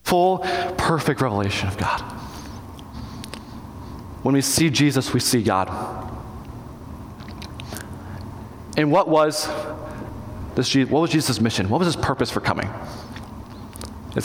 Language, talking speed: English, 115 wpm